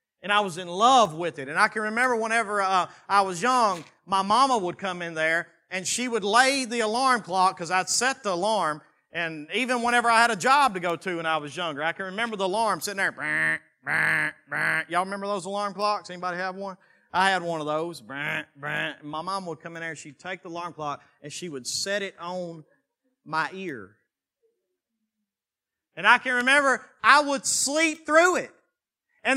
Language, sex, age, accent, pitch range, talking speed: English, male, 40-59, American, 185-265 Hz, 205 wpm